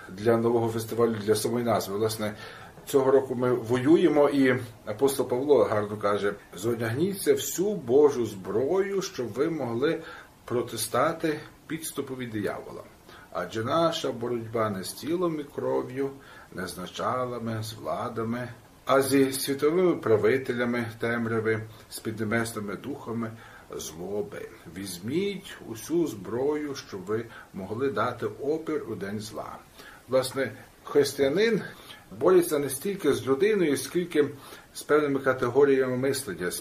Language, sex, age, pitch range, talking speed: Ukrainian, male, 50-69, 115-140 Hz, 120 wpm